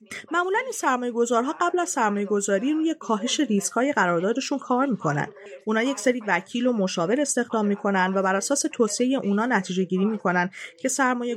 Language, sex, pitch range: Persian, female, 185-270 Hz